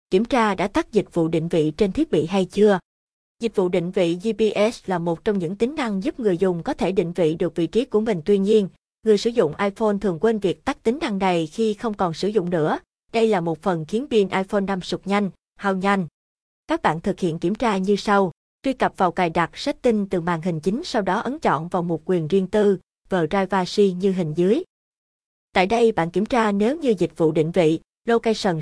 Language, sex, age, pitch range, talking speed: Vietnamese, female, 20-39, 180-225 Hz, 235 wpm